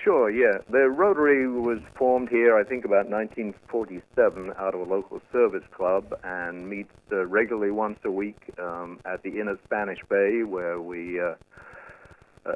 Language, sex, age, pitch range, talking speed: English, male, 50-69, 100-140 Hz, 160 wpm